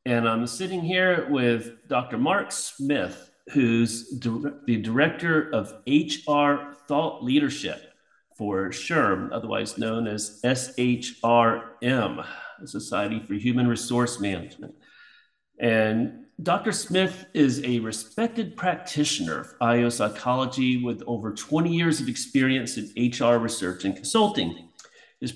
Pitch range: 115-145 Hz